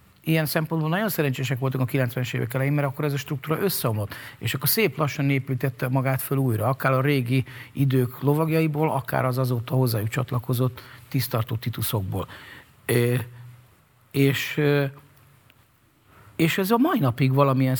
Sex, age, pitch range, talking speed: male, 50-69, 120-140 Hz, 145 wpm